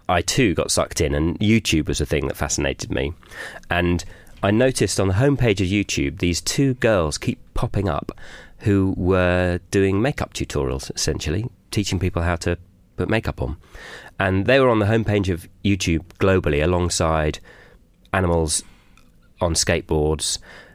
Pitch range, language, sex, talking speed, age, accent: 80-100 Hz, English, male, 155 wpm, 30-49, British